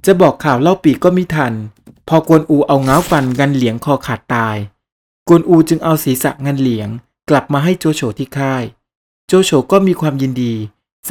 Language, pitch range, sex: Thai, 125-165 Hz, male